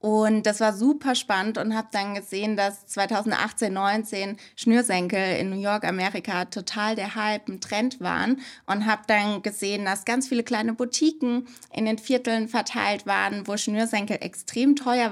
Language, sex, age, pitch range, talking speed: German, female, 20-39, 205-235 Hz, 160 wpm